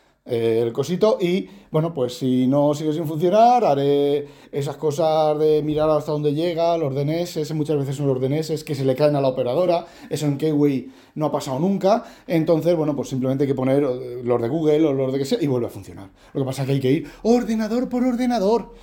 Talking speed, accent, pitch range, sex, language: 220 wpm, Spanish, 130-185 Hz, male, Spanish